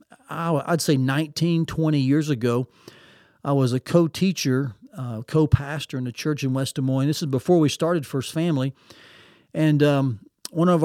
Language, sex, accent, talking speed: English, male, American, 175 wpm